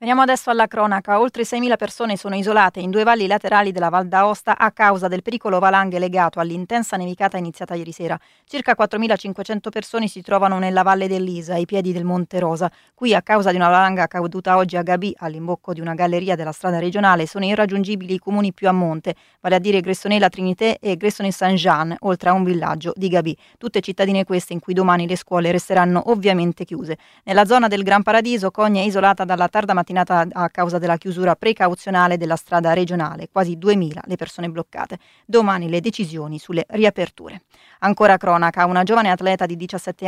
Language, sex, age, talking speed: Italian, female, 20-39, 185 wpm